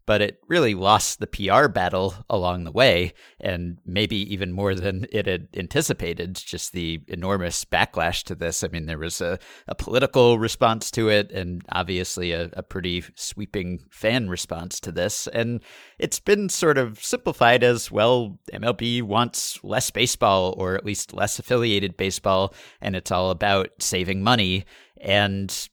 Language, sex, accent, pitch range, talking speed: English, male, American, 90-115 Hz, 160 wpm